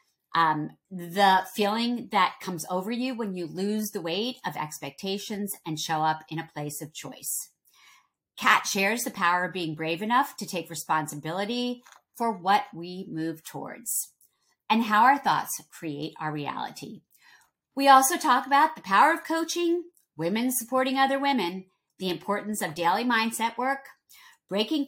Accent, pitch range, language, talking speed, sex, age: American, 165-250 Hz, English, 155 wpm, female, 40-59